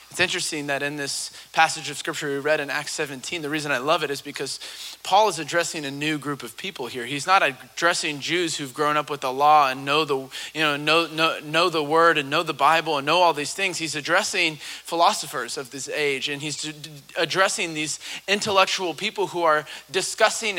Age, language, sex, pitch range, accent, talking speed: 30-49, English, male, 165-240 Hz, American, 215 wpm